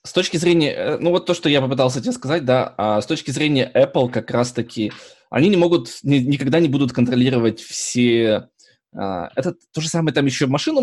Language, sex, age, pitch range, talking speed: Russian, male, 20-39, 115-145 Hz, 185 wpm